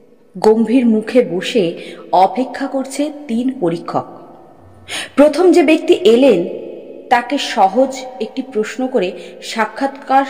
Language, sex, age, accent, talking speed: Bengali, female, 30-49, native, 100 wpm